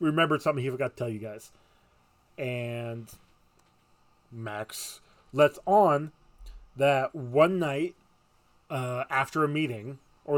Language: English